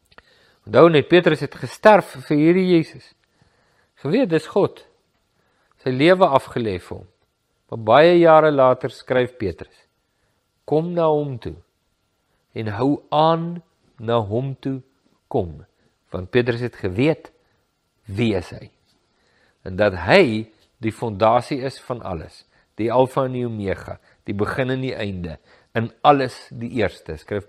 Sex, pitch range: male, 105-155 Hz